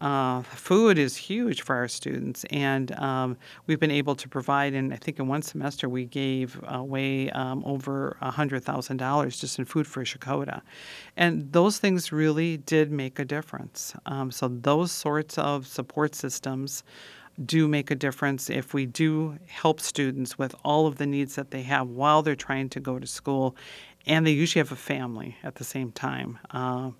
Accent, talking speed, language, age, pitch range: American, 185 wpm, English, 50-69, 130-155 Hz